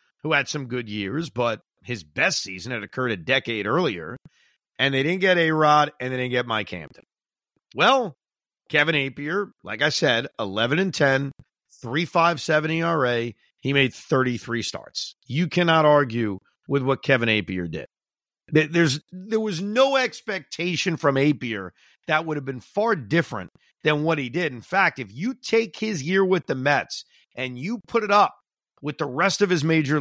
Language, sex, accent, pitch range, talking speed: English, male, American, 130-185 Hz, 170 wpm